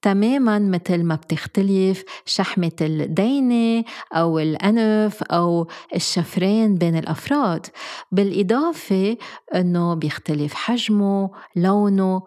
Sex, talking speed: female, 85 wpm